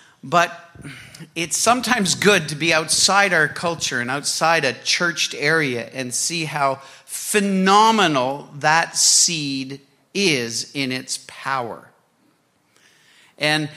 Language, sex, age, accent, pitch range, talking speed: English, male, 50-69, American, 140-190 Hz, 110 wpm